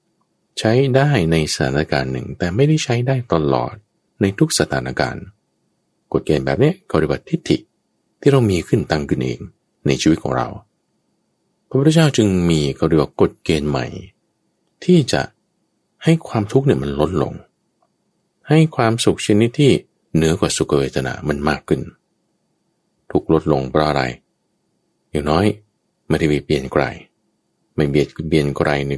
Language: Thai